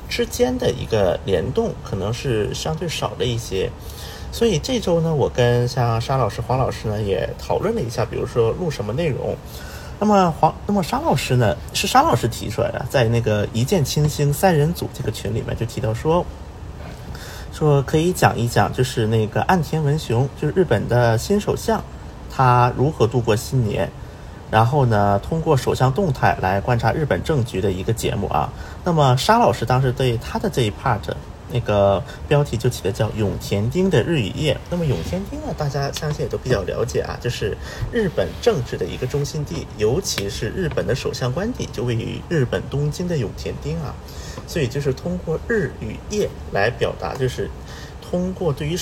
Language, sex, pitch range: Chinese, male, 110-150 Hz